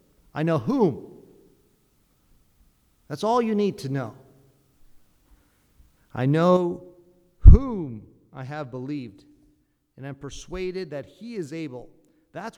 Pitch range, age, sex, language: 130-165 Hz, 50-69, male, English